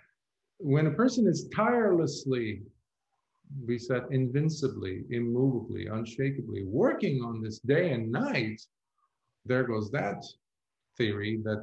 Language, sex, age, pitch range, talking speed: English, male, 40-59, 110-140 Hz, 110 wpm